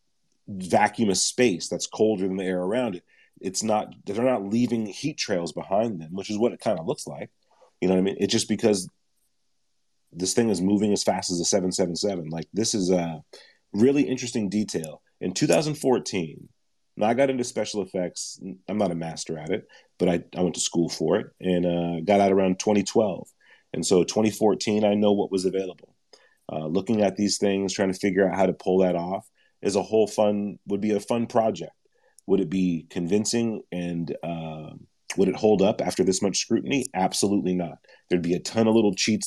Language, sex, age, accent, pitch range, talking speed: English, male, 30-49, American, 90-110 Hz, 200 wpm